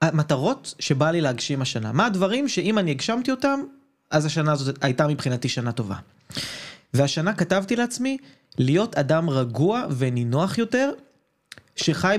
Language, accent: Hebrew, native